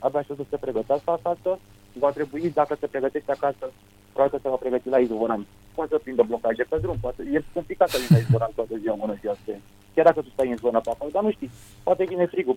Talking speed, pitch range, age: 215 wpm, 115-155 Hz, 30-49